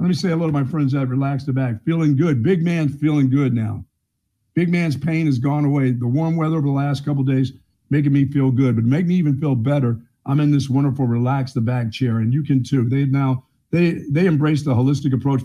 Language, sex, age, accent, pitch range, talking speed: English, male, 50-69, American, 125-145 Hz, 245 wpm